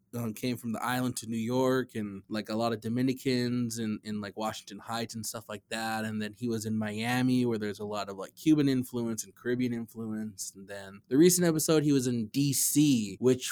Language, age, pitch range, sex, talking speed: English, 20-39, 115-140 Hz, male, 215 wpm